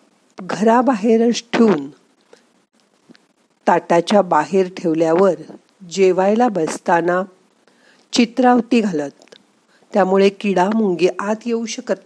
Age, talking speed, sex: 50-69, 75 wpm, female